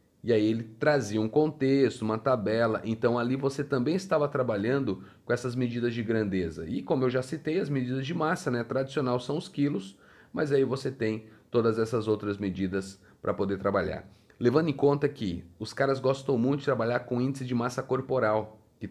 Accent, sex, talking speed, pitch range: Brazilian, male, 190 wpm, 105-135 Hz